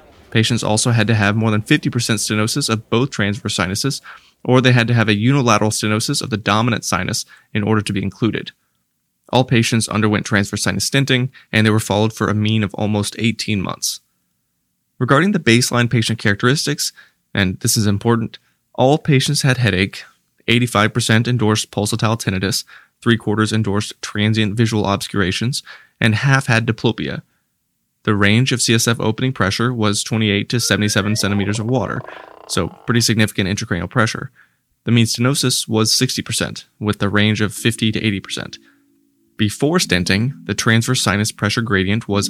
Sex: male